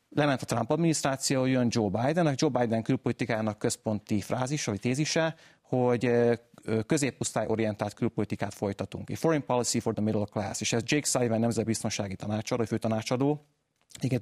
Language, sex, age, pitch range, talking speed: Hungarian, male, 30-49, 105-125 Hz, 150 wpm